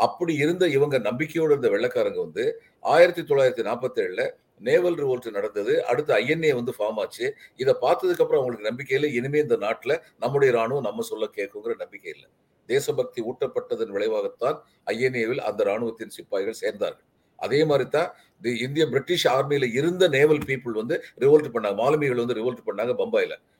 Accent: native